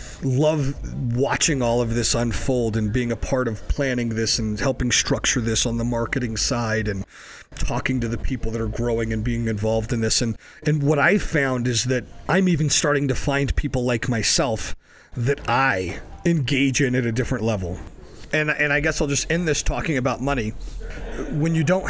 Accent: American